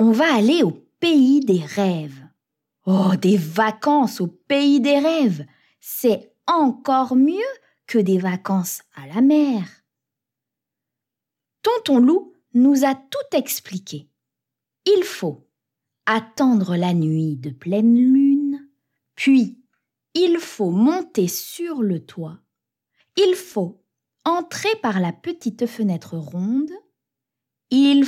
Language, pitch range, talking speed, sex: French, 185-290 Hz, 115 wpm, female